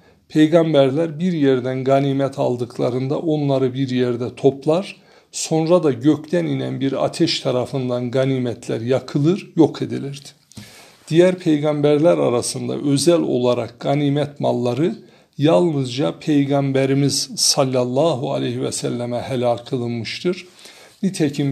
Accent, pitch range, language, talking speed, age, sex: native, 125-155 Hz, Turkish, 100 wpm, 60-79, male